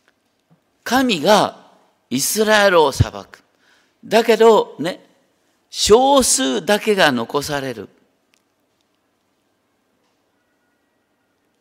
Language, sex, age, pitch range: Japanese, male, 50-69, 165-225 Hz